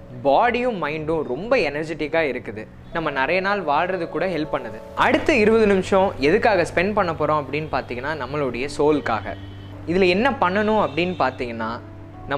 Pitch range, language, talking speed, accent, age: 125-200 Hz, Tamil, 130 wpm, native, 20-39